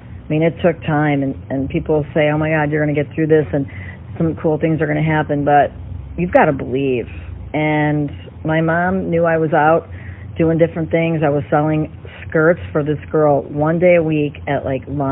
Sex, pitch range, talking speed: female, 140-160 Hz, 215 wpm